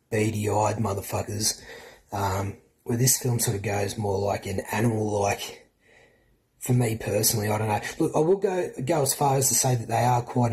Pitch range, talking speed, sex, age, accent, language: 105-120 Hz, 195 wpm, male, 30-49, Australian, English